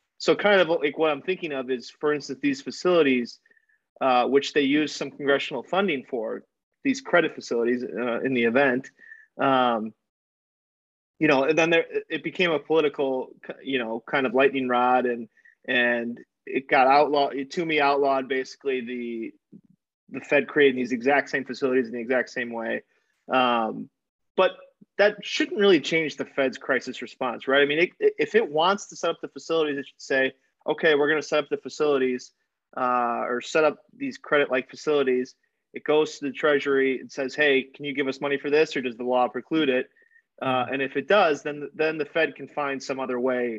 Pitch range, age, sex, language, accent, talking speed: 130-160 Hz, 30-49, male, English, American, 195 wpm